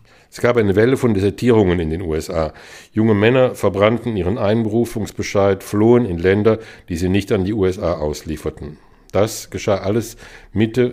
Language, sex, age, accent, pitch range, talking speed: German, male, 50-69, German, 90-110 Hz, 155 wpm